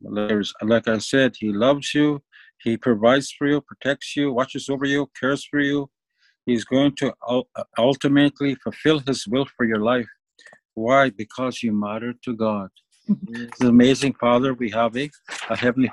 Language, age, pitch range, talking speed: English, 50-69, 115-140 Hz, 160 wpm